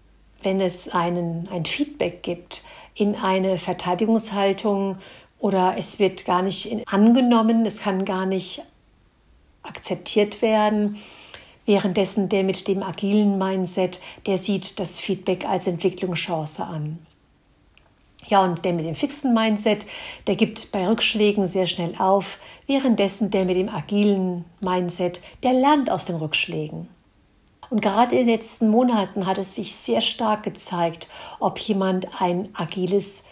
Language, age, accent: German, 60-79, German